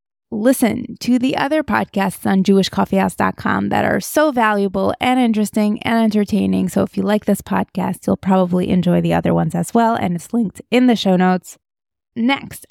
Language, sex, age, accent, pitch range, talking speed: English, female, 20-39, American, 185-240 Hz, 175 wpm